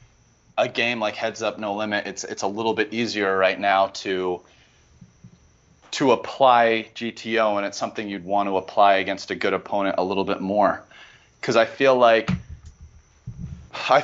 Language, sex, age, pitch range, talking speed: English, male, 30-49, 95-110 Hz, 165 wpm